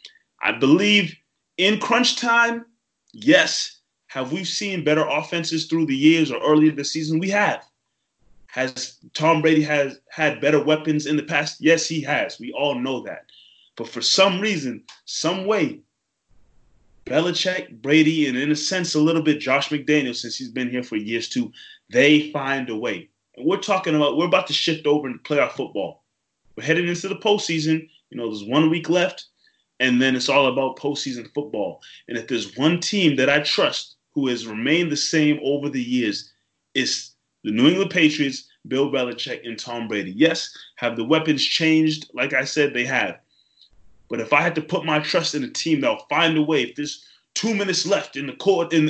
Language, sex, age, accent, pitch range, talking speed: English, male, 20-39, American, 135-170 Hz, 195 wpm